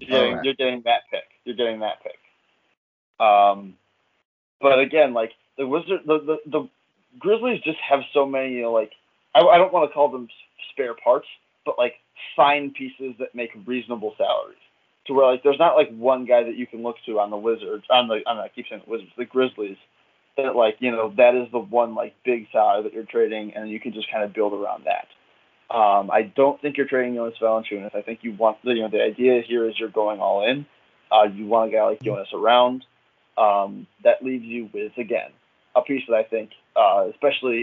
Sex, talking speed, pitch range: male, 210 wpm, 110-135 Hz